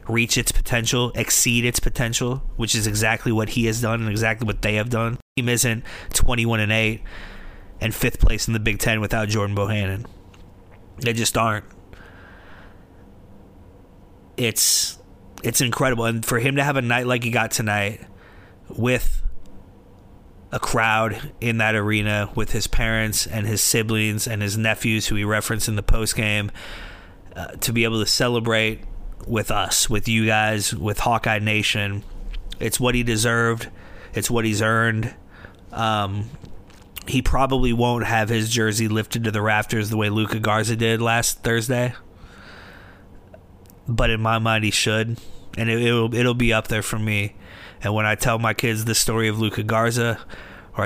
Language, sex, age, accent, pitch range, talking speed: English, male, 30-49, American, 100-115 Hz, 165 wpm